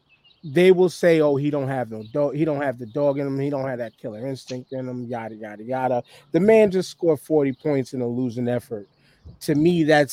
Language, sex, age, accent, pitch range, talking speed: English, male, 30-49, American, 130-155 Hz, 235 wpm